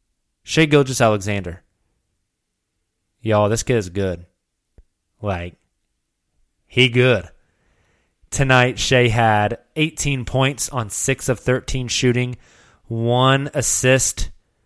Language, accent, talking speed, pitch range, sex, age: English, American, 95 wpm, 100-130 Hz, male, 20-39